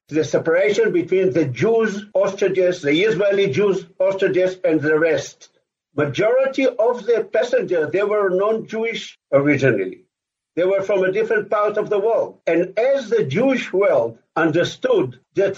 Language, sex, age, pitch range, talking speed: English, male, 60-79, 170-275 Hz, 145 wpm